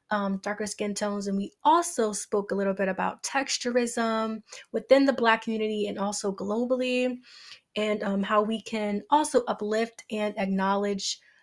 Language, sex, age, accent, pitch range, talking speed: English, female, 20-39, American, 195-230 Hz, 150 wpm